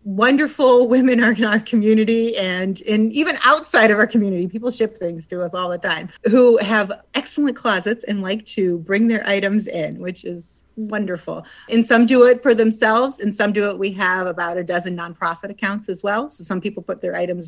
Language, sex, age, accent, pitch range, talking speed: English, female, 30-49, American, 180-230 Hz, 205 wpm